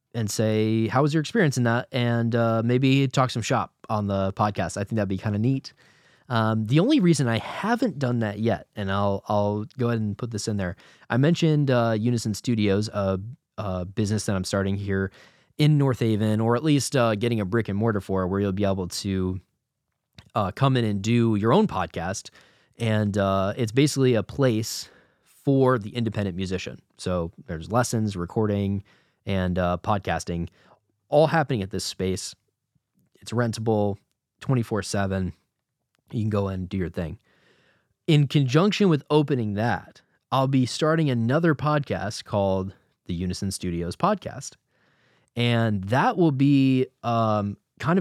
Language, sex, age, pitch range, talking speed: English, male, 20-39, 100-130 Hz, 165 wpm